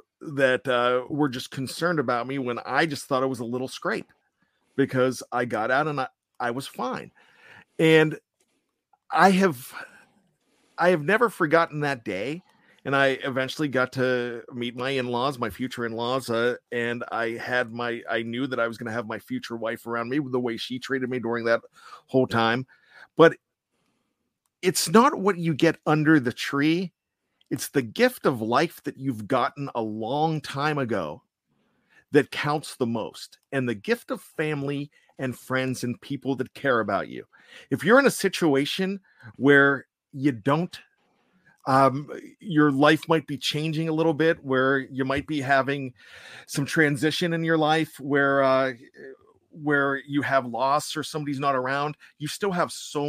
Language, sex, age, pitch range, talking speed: English, male, 40-59, 125-155 Hz, 170 wpm